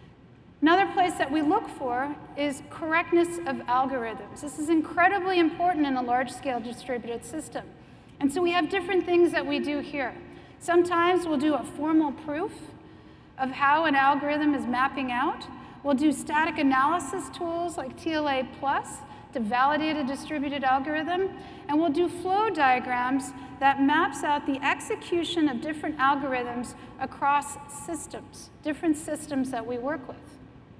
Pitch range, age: 265-340 Hz, 40-59